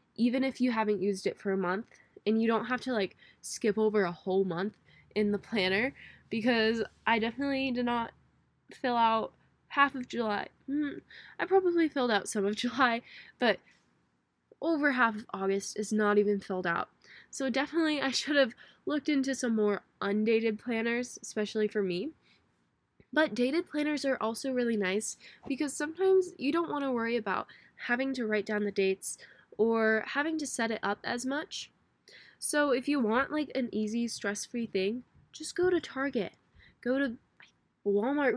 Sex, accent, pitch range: female, American, 210-265 Hz